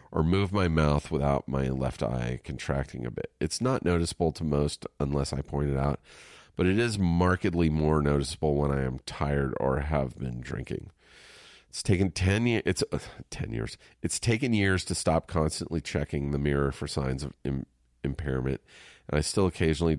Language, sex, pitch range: English, male, 70-85 Hz